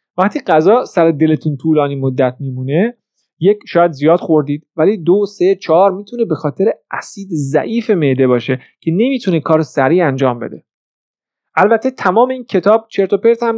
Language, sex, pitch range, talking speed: Persian, male, 150-210 Hz, 160 wpm